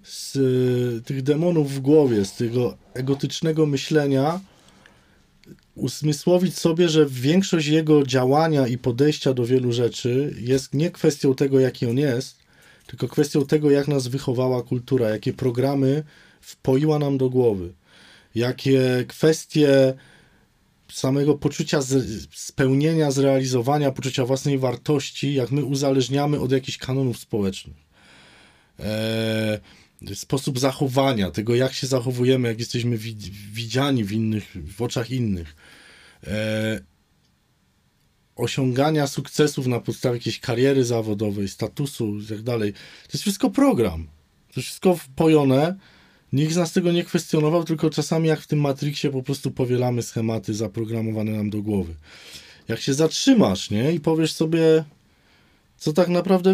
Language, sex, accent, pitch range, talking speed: Polish, male, native, 115-150 Hz, 125 wpm